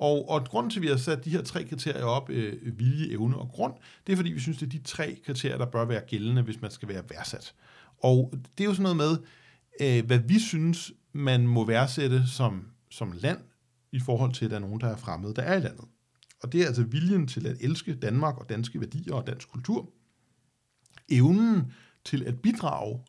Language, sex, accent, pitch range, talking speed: Danish, male, native, 120-155 Hz, 225 wpm